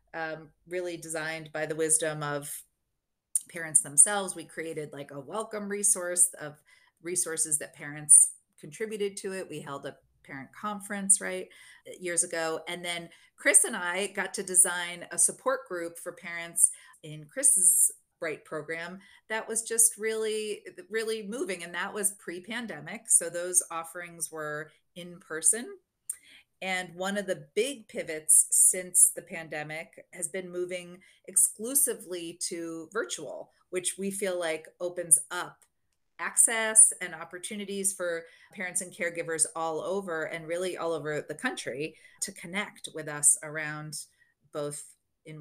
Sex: female